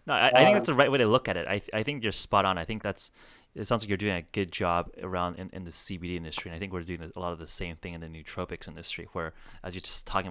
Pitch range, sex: 85-110 Hz, male